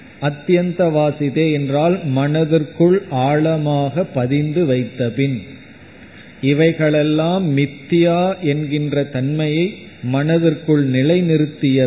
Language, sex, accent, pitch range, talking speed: Tamil, male, native, 140-175 Hz, 65 wpm